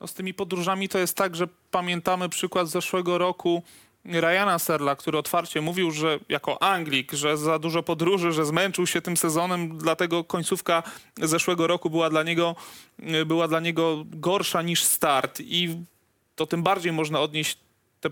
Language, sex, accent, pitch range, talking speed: Polish, male, native, 155-170 Hz, 155 wpm